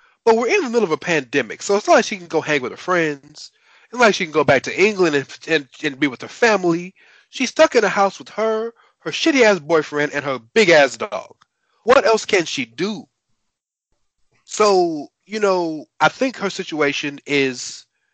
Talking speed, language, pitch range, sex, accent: 205 wpm, English, 150-215 Hz, male, American